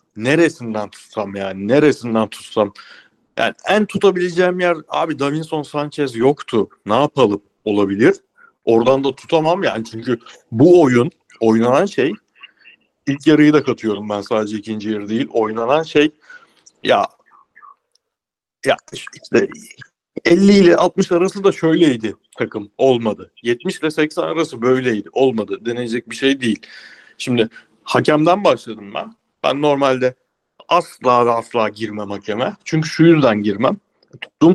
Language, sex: Turkish, male